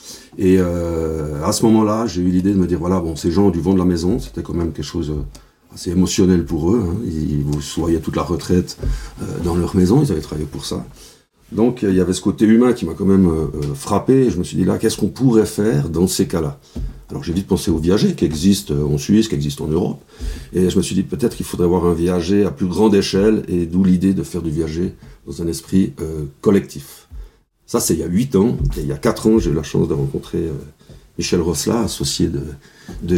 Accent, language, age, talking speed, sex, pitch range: French, French, 50-69, 245 wpm, male, 80-100 Hz